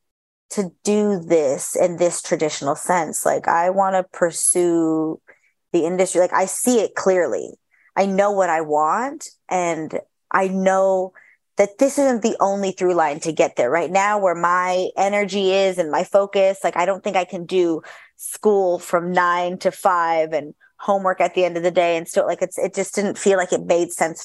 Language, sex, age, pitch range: English, female, 20-39, 170-205 Hz